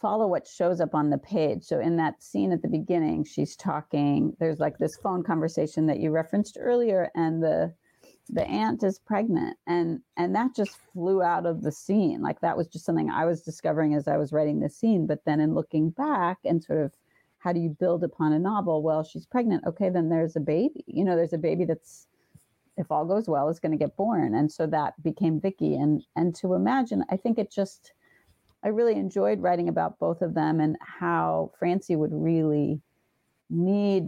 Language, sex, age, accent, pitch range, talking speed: English, female, 40-59, American, 155-185 Hz, 210 wpm